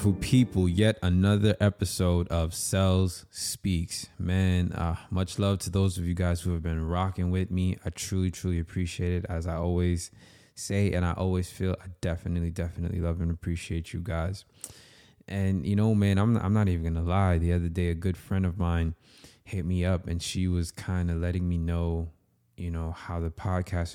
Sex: male